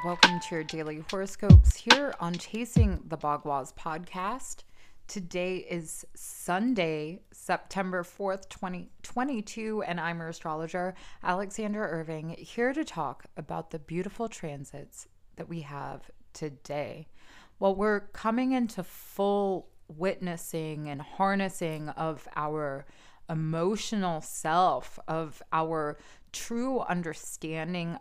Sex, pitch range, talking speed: female, 155-190 Hz, 105 wpm